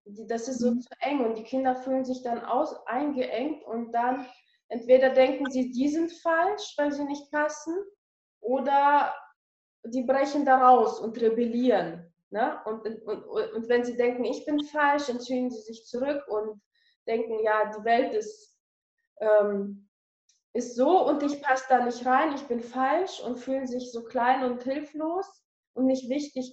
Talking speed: 170 wpm